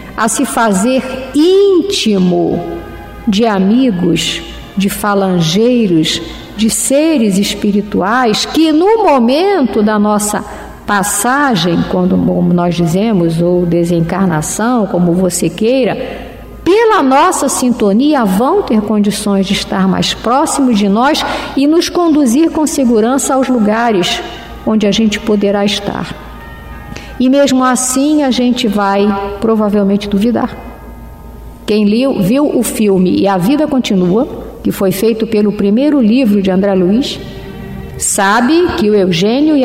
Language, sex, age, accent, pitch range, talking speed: Portuguese, female, 50-69, Brazilian, 200-280 Hz, 120 wpm